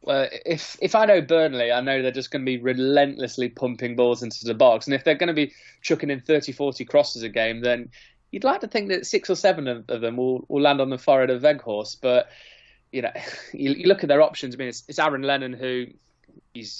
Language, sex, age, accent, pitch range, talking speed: English, male, 20-39, British, 125-155 Hz, 245 wpm